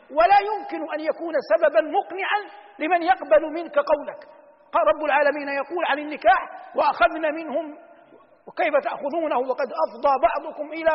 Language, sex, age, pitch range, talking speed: Arabic, male, 50-69, 290-375 Hz, 130 wpm